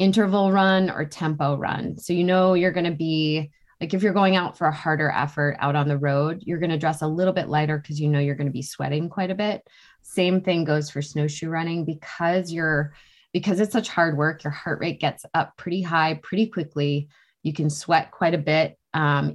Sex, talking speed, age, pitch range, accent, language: female, 225 wpm, 20-39, 145-170 Hz, American, English